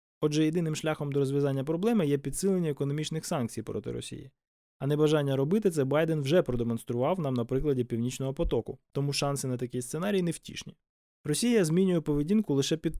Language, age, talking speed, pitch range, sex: Ukrainian, 20-39, 165 wpm, 125-160 Hz, male